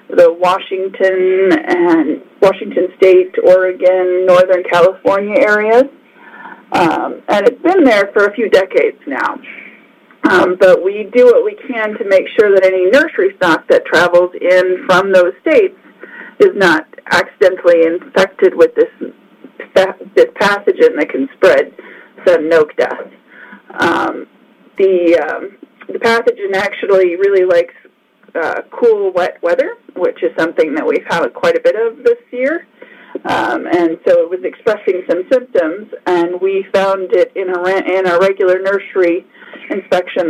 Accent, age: American, 40-59